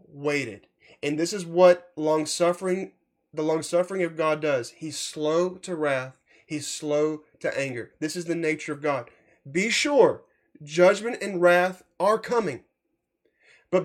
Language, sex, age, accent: English, male, 20-39, American